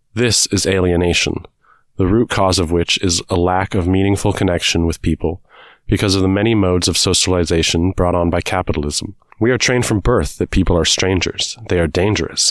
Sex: male